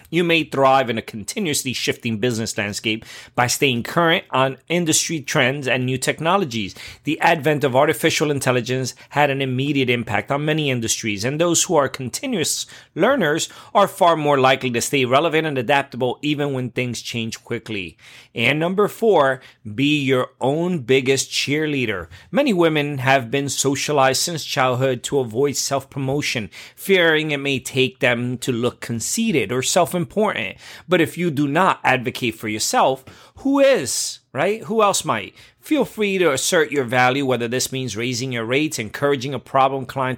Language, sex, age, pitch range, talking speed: English, male, 30-49, 125-160 Hz, 165 wpm